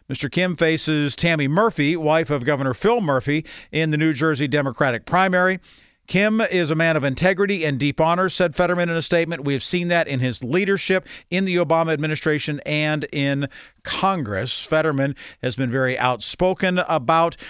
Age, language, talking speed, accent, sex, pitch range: 50-69, English, 170 wpm, American, male, 135-170 Hz